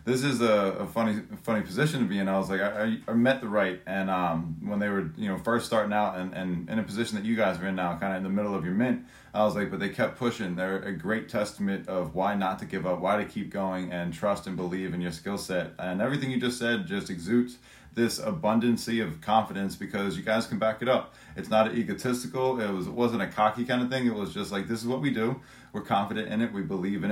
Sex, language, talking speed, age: male, English, 270 wpm, 30-49